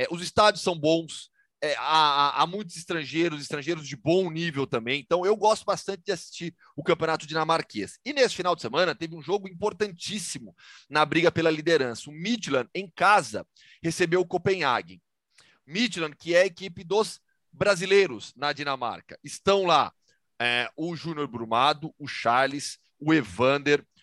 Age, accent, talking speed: 30-49, Brazilian, 150 wpm